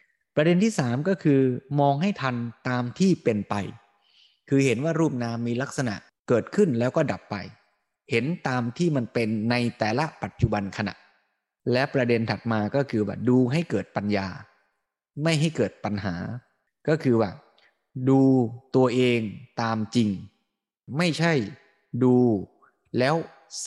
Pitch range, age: 110-145 Hz, 20-39